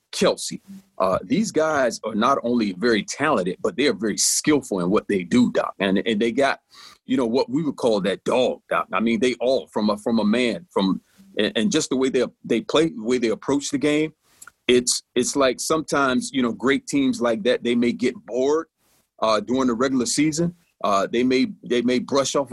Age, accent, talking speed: 40-59, American, 220 wpm